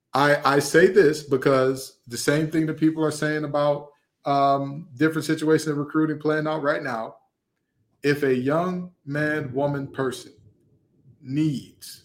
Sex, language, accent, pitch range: male, English, American, 140-200 Hz